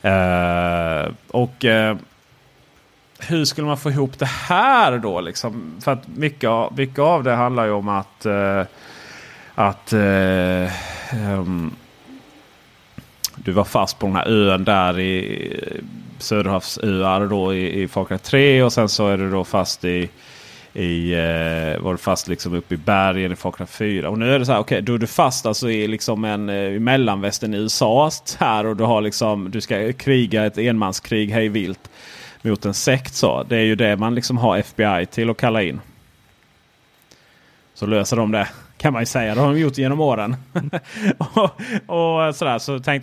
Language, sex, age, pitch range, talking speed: Swedish, male, 30-49, 95-130 Hz, 180 wpm